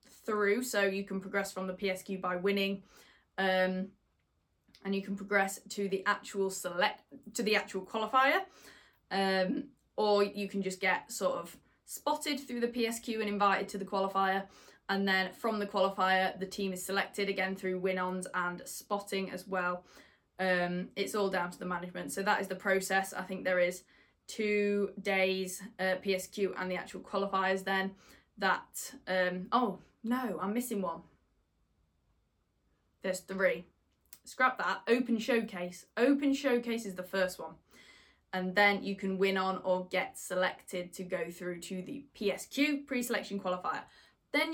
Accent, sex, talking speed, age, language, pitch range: British, female, 160 wpm, 20-39, English, 185-205 Hz